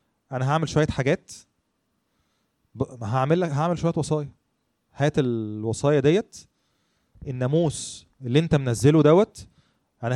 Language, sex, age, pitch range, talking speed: Arabic, male, 20-39, 125-155 Hz, 100 wpm